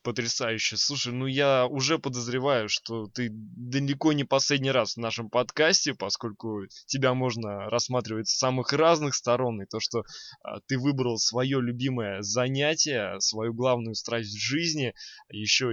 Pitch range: 115-145 Hz